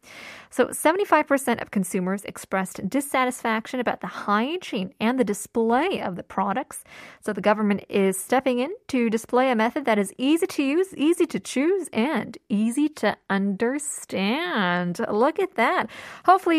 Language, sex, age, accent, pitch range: Korean, female, 20-39, American, 215-335 Hz